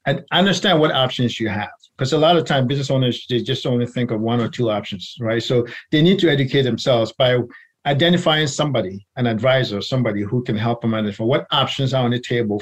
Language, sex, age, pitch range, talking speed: English, male, 50-69, 120-150 Hz, 220 wpm